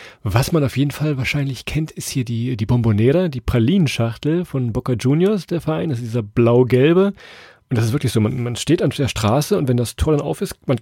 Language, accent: German, German